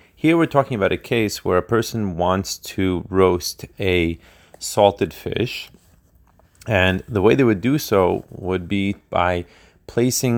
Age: 30-49